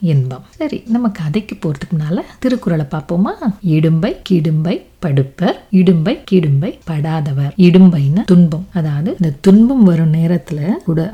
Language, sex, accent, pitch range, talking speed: Tamil, female, native, 160-200 Hz, 115 wpm